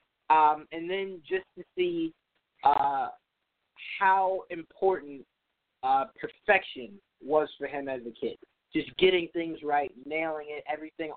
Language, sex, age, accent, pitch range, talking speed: English, male, 20-39, American, 140-195 Hz, 130 wpm